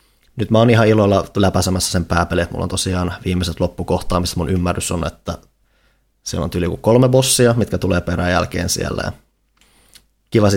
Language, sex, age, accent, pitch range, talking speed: Finnish, male, 30-49, native, 90-105 Hz, 165 wpm